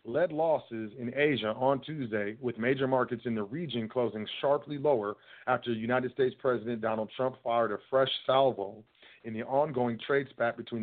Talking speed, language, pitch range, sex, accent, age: 170 wpm, English, 110-130 Hz, male, American, 40-59